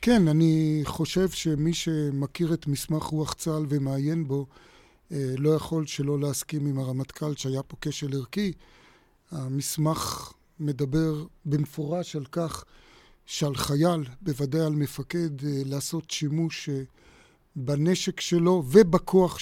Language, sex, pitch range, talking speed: Hebrew, male, 150-175 Hz, 110 wpm